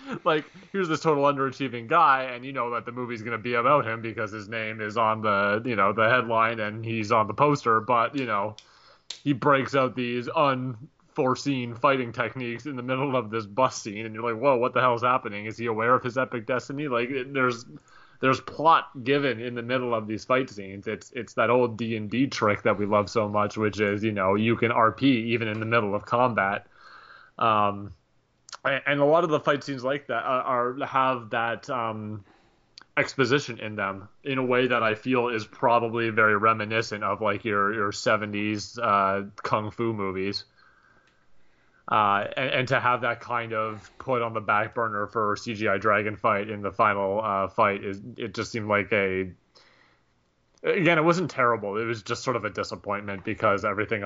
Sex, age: male, 20-39